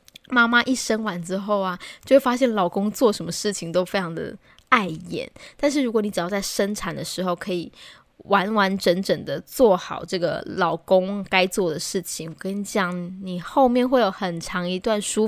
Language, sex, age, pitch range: Chinese, female, 20-39, 180-235 Hz